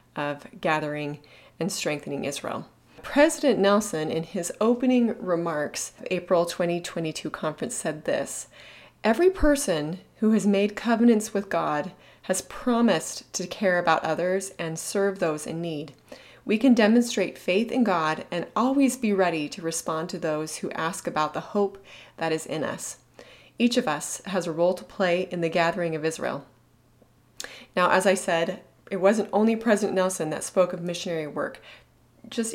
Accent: American